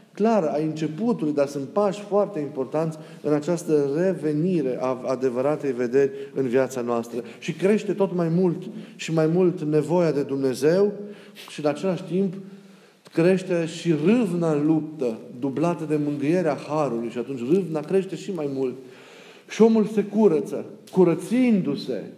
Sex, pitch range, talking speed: male, 150-185 Hz, 145 wpm